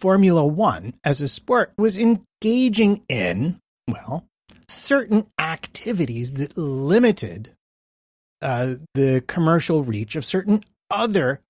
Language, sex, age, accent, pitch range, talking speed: English, male, 30-49, American, 130-175 Hz, 105 wpm